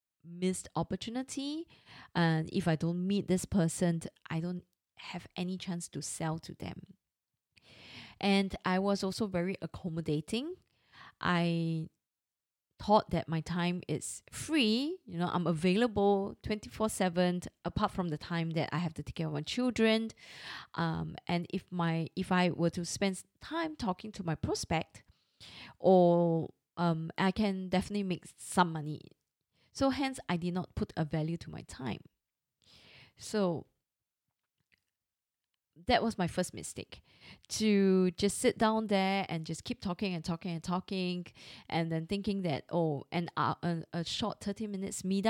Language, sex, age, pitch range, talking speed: English, female, 20-39, 165-200 Hz, 155 wpm